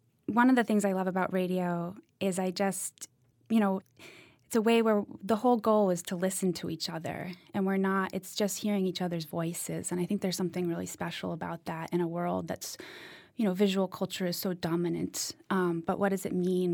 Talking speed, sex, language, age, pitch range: 220 wpm, female, English, 20-39, 175-210 Hz